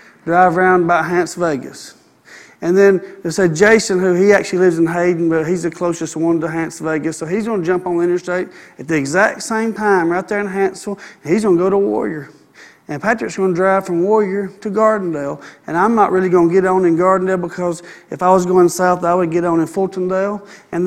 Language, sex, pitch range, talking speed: English, male, 180-220 Hz, 225 wpm